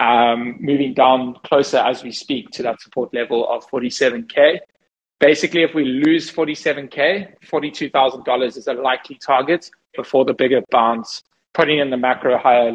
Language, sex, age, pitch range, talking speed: English, male, 20-39, 125-155 Hz, 150 wpm